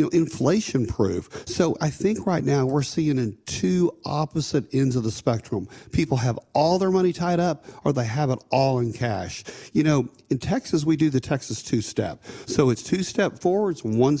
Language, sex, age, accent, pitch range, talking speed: English, male, 40-59, American, 120-165 Hz, 200 wpm